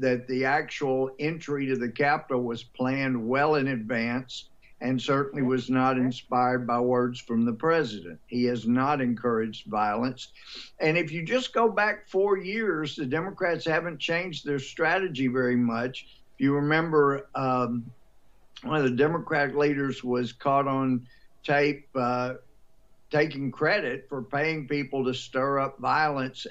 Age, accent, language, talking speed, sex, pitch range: 50-69, American, English, 150 wpm, male, 125-145 Hz